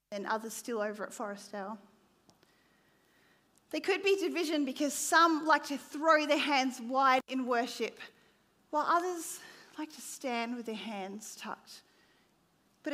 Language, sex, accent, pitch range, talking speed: English, female, Australian, 205-275 Hz, 145 wpm